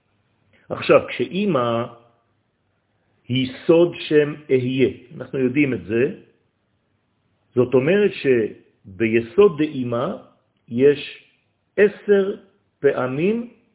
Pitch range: 115-150 Hz